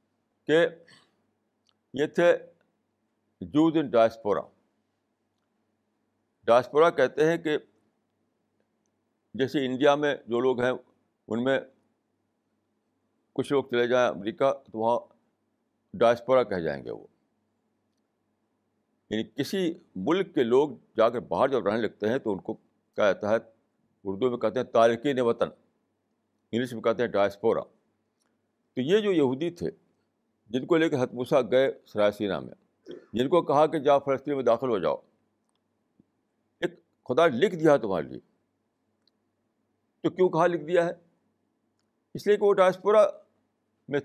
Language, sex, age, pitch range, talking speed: Urdu, male, 60-79, 115-170 Hz, 135 wpm